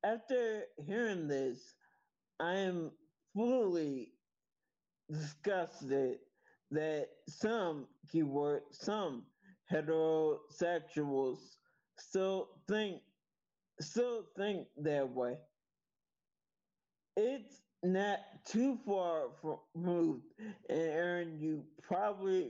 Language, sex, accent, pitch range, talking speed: English, male, American, 150-195 Hz, 70 wpm